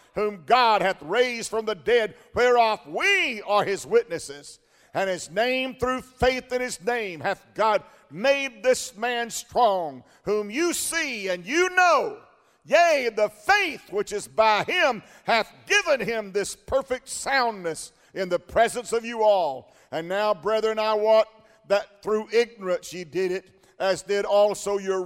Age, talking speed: 50-69, 160 wpm